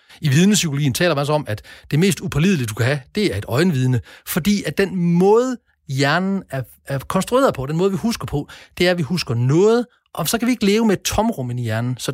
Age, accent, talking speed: 40-59, native, 235 wpm